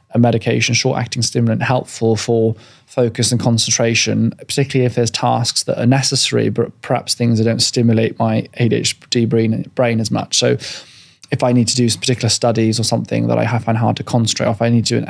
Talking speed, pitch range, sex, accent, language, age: 200 wpm, 115-125 Hz, male, British, English, 20-39